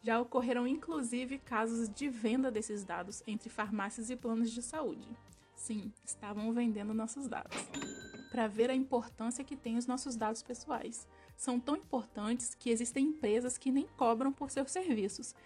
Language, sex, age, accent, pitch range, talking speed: Portuguese, female, 20-39, Brazilian, 220-260 Hz, 160 wpm